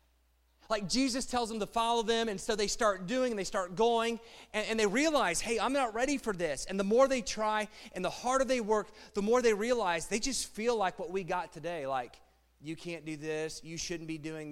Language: English